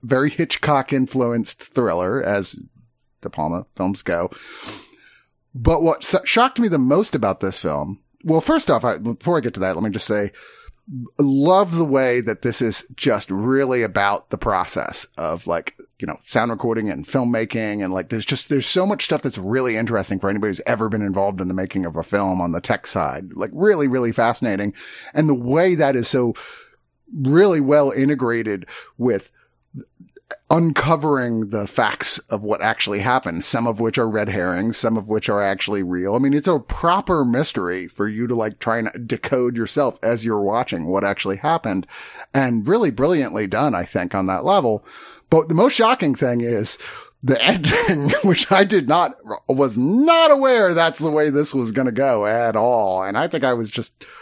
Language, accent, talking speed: English, American, 190 wpm